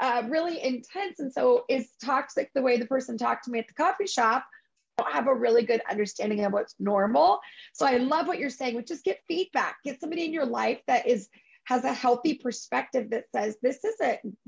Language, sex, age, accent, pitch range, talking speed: English, female, 30-49, American, 235-315 Hz, 225 wpm